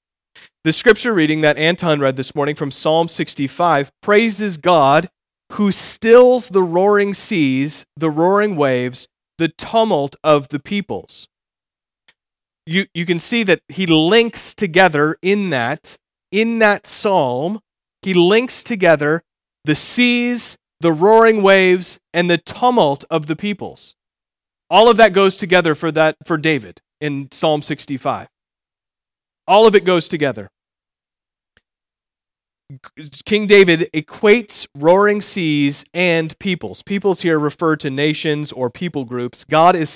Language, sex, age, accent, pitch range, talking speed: English, male, 30-49, American, 150-200 Hz, 130 wpm